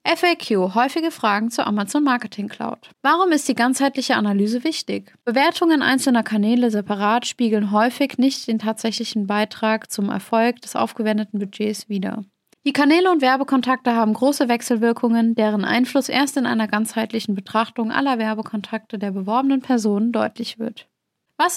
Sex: female